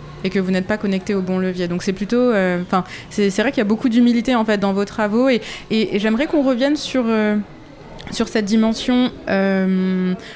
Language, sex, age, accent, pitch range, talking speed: French, female, 20-39, French, 185-230 Hz, 225 wpm